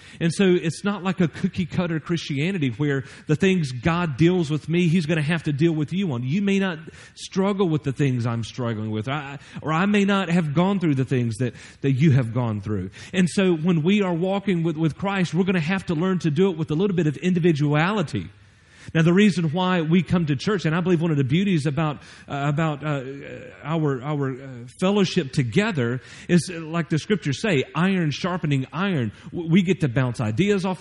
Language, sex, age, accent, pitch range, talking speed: English, male, 40-59, American, 125-180 Hz, 220 wpm